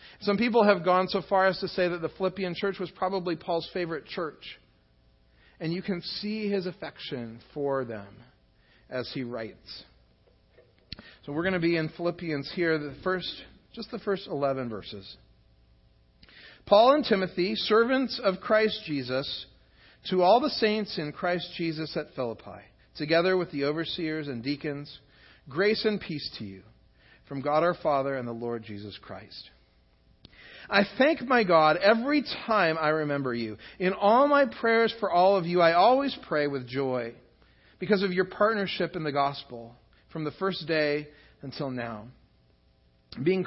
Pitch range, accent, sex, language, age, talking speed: 130-200 Hz, American, male, English, 40-59, 160 wpm